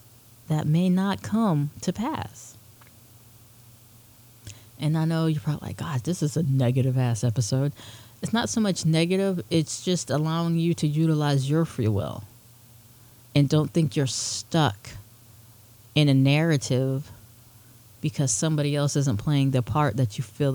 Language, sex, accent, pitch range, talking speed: English, female, American, 115-165 Hz, 150 wpm